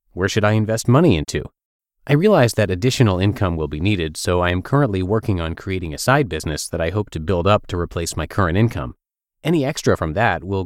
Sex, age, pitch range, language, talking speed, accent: male, 30-49, 85-120 Hz, English, 225 wpm, American